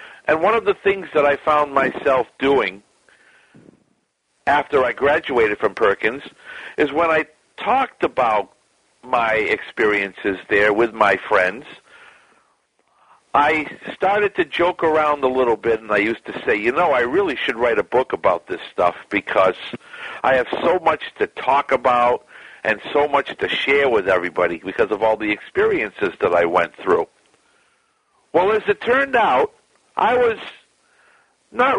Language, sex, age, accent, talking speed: English, male, 50-69, American, 155 wpm